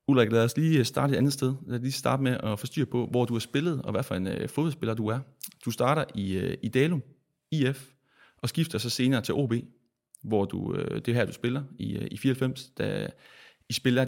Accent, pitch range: native, 105-135 Hz